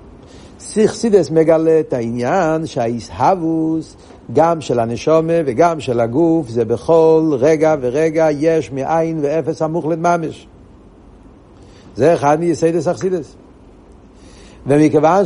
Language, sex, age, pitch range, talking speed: Hebrew, male, 60-79, 130-165 Hz, 100 wpm